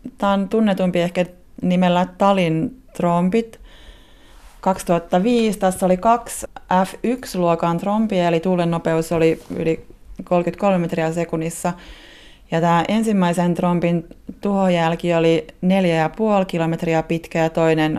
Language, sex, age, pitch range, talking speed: Finnish, female, 30-49, 160-185 Hz, 105 wpm